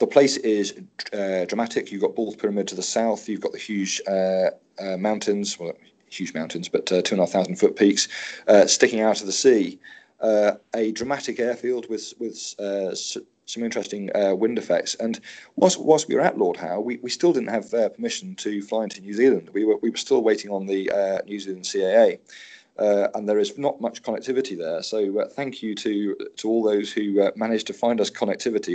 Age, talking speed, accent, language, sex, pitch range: 40-59, 220 wpm, British, English, male, 100-120 Hz